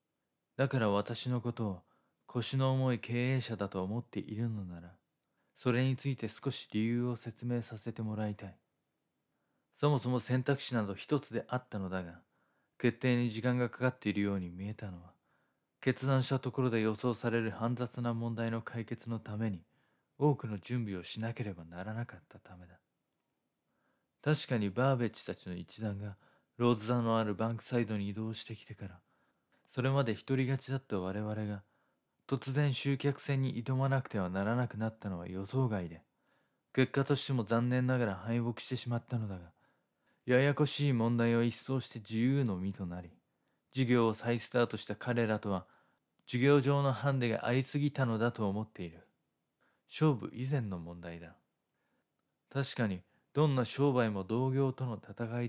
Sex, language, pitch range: male, Japanese, 105-130 Hz